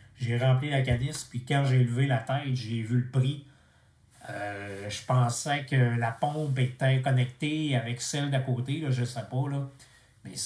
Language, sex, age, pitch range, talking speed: French, male, 30-49, 120-135 Hz, 180 wpm